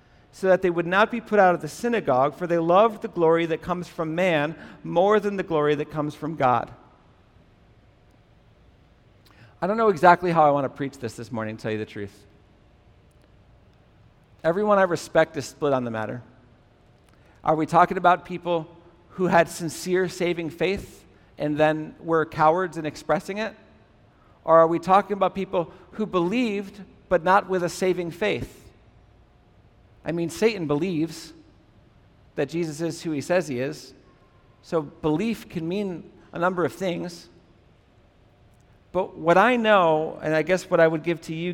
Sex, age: male, 50-69